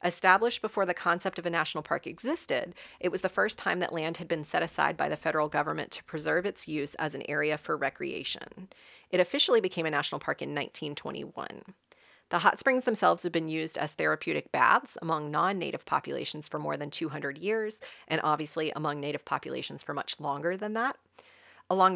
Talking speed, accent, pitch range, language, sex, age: 190 wpm, American, 160-215 Hz, English, female, 40-59